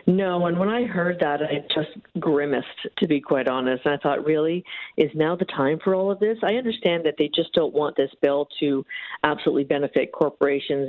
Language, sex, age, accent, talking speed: English, female, 50-69, American, 210 wpm